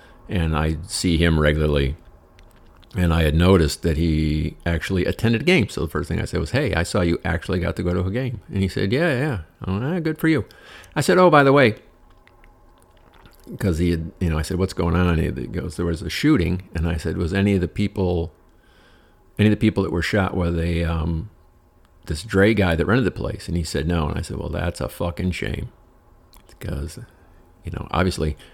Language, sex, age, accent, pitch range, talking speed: English, male, 50-69, American, 80-100 Hz, 220 wpm